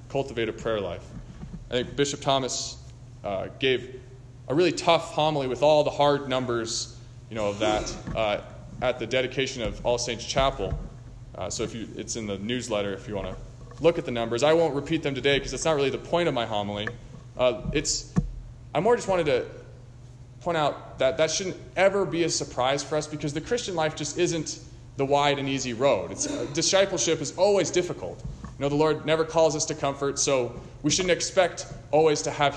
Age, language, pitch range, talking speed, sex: 20-39, English, 120-155 Hz, 205 wpm, male